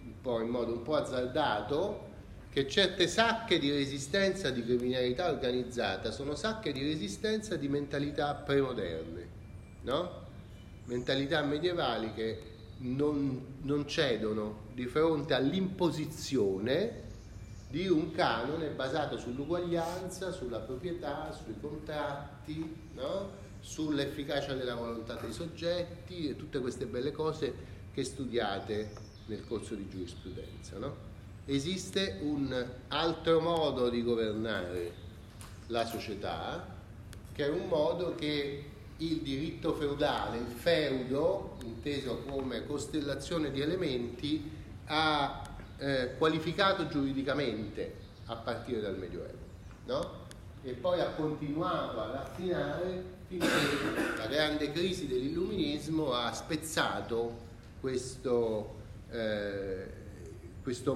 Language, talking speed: Italian, 100 wpm